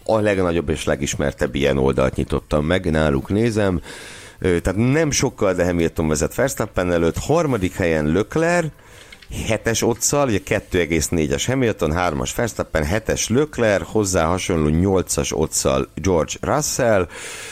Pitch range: 75-100 Hz